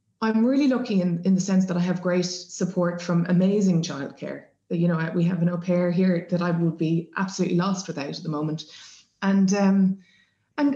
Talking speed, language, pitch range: 200 wpm, English, 175-235 Hz